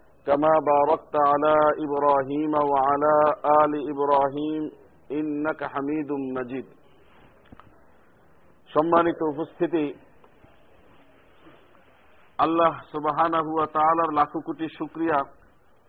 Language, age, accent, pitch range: Bengali, 50-69, native, 150-170 Hz